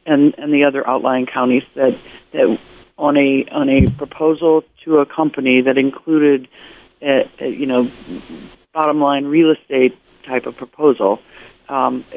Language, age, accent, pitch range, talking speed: English, 50-69, American, 125-155 Hz, 150 wpm